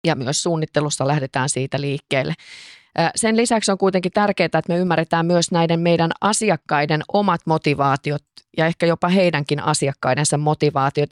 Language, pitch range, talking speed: Finnish, 145-175 Hz, 140 wpm